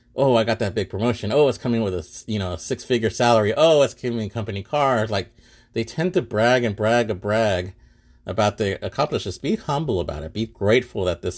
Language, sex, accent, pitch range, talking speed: English, male, American, 90-115 Hz, 220 wpm